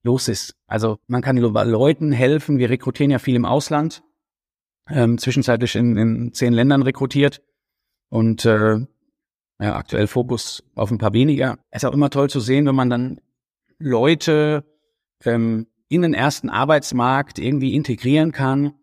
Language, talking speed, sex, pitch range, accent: German, 145 wpm, male, 110-135 Hz, German